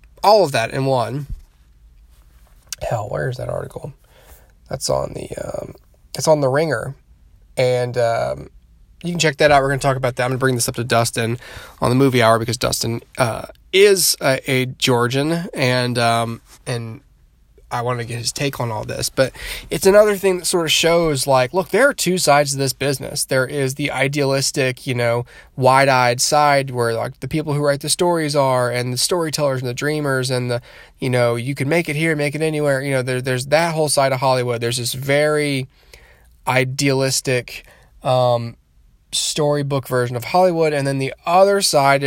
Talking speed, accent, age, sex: 195 wpm, American, 20-39, male